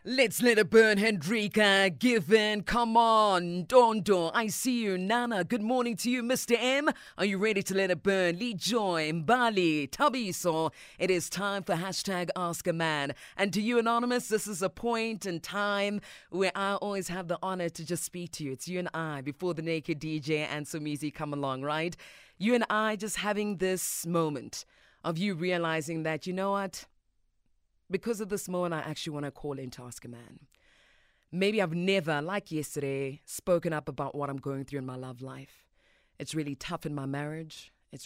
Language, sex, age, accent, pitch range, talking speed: English, female, 30-49, British, 155-215 Hz, 195 wpm